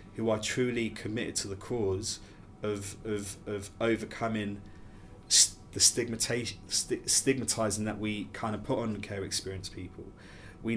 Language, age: English, 20-39